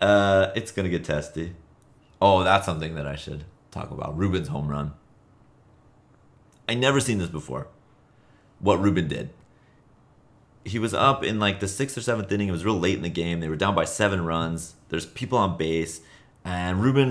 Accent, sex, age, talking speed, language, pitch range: American, male, 30-49, 190 wpm, English, 85-120 Hz